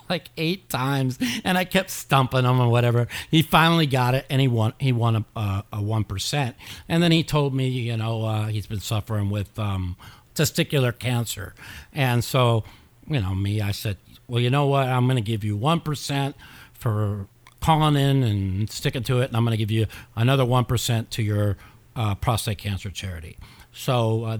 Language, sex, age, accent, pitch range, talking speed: English, male, 50-69, American, 105-135 Hz, 185 wpm